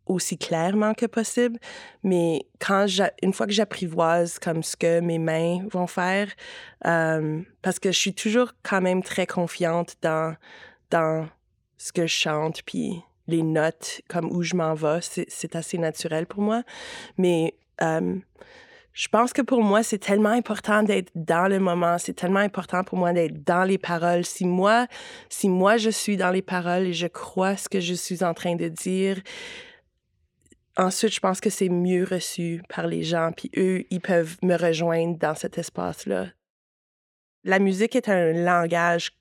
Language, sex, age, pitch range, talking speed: French, female, 20-39, 170-195 Hz, 175 wpm